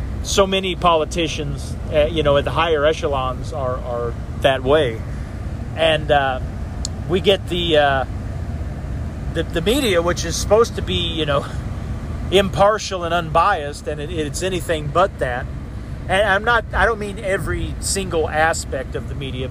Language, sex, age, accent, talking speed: English, male, 40-59, American, 155 wpm